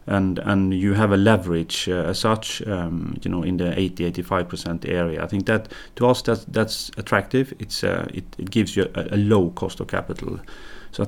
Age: 30-49